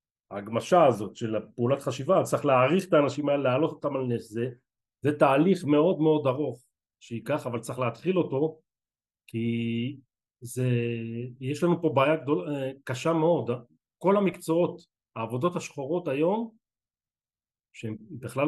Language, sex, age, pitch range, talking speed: Hebrew, male, 40-59, 120-155 Hz, 135 wpm